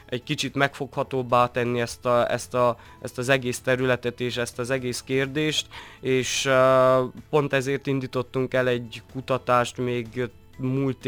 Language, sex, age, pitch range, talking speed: Hungarian, male, 20-39, 120-135 Hz, 125 wpm